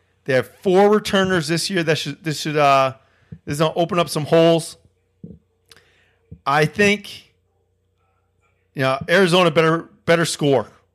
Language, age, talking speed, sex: English, 30-49, 145 wpm, male